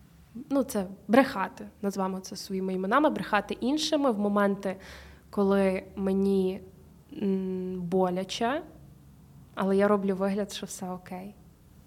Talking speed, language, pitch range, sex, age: 105 wpm, Ukrainian, 190-250 Hz, female, 20-39